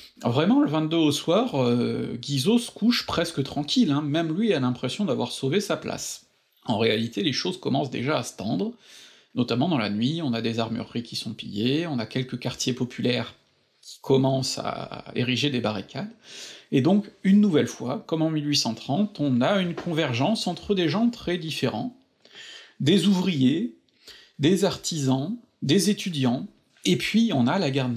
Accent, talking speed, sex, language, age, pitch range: French, 170 wpm, male, French, 40-59, 130-205 Hz